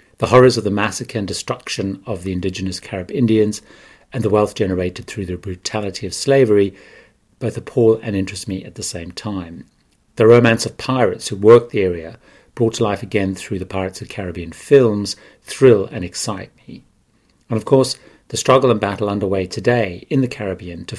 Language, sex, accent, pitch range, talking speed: English, male, British, 95-115 Hz, 185 wpm